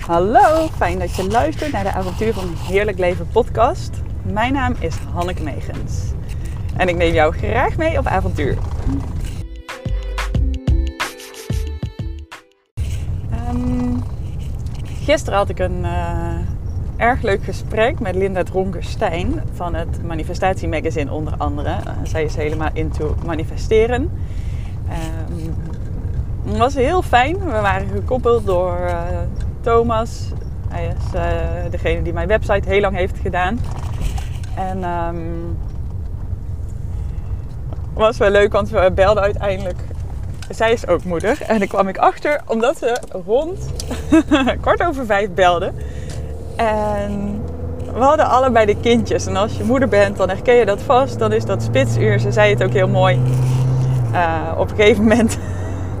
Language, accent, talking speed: Dutch, Dutch, 135 wpm